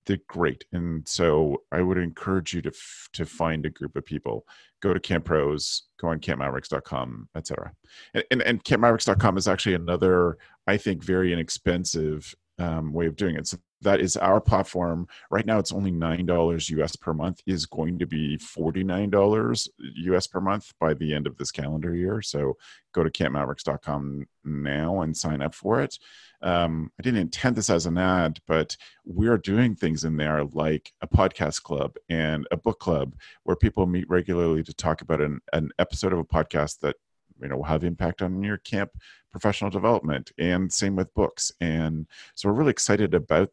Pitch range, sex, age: 75-95 Hz, male, 40-59